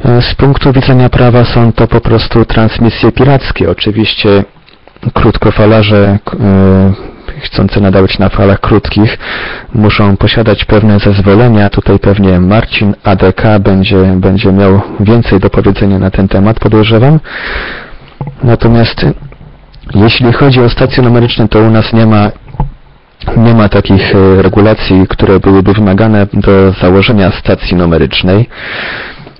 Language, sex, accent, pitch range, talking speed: Polish, male, native, 95-115 Hz, 120 wpm